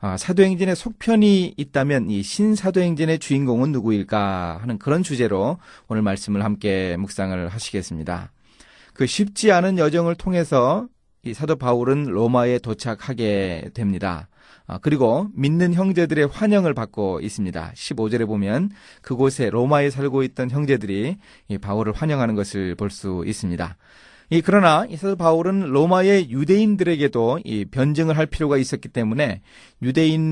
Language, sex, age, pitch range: Korean, male, 30-49, 105-160 Hz